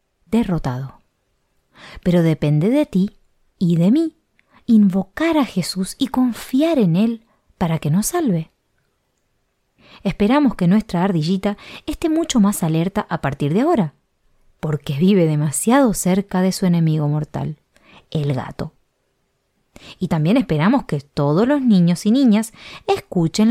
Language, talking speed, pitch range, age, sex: Spanish, 130 wpm, 165-265 Hz, 30-49, female